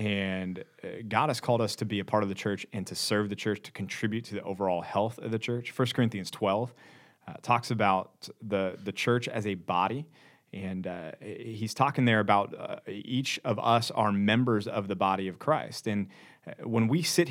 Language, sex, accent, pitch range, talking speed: English, male, American, 110-135 Hz, 205 wpm